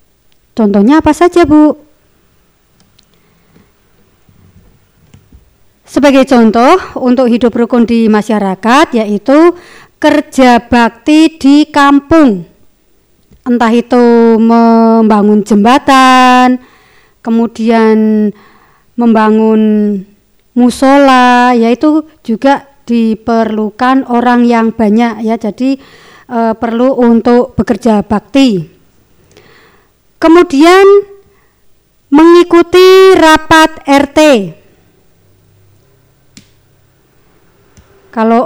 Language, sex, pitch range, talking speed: Indonesian, male, 220-275 Hz, 65 wpm